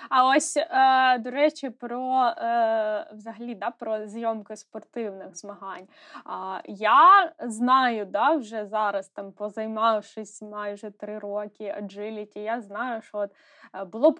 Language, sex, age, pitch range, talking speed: Ukrainian, female, 10-29, 220-285 Hz, 120 wpm